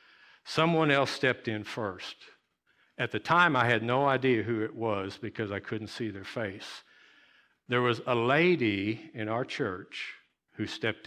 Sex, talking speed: male, 165 wpm